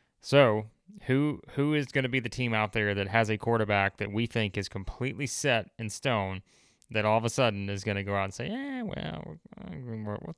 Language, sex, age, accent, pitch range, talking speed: English, male, 20-39, American, 100-130 Hz, 220 wpm